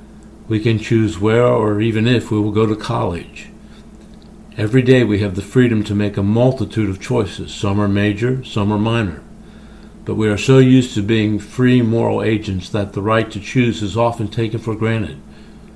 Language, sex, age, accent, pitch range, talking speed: English, male, 60-79, American, 100-120 Hz, 190 wpm